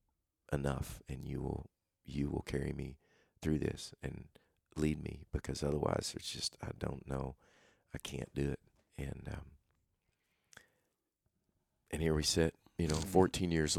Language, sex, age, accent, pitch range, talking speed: English, male, 40-59, American, 75-90 Hz, 150 wpm